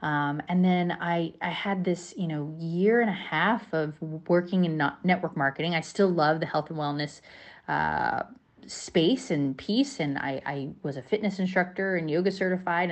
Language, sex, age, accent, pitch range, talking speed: English, female, 30-49, American, 145-180 Hz, 180 wpm